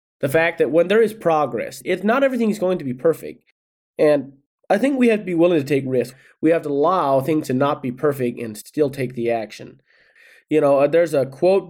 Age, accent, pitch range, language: 30-49, American, 125-160 Hz, English